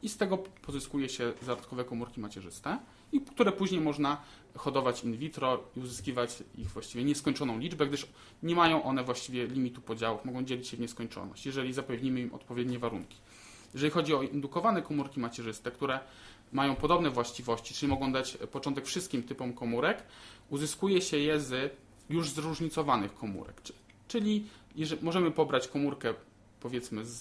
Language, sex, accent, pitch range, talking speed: Polish, male, native, 120-150 Hz, 150 wpm